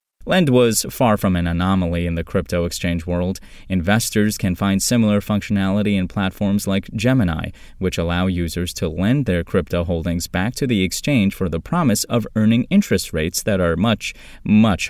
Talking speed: 175 wpm